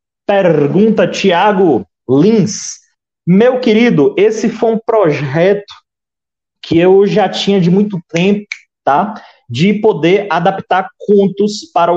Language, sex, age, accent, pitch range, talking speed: Portuguese, male, 30-49, Brazilian, 150-195 Hz, 110 wpm